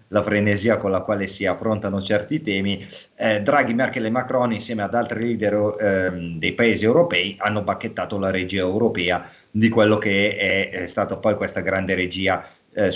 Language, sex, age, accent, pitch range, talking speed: Italian, male, 30-49, native, 100-120 Hz, 175 wpm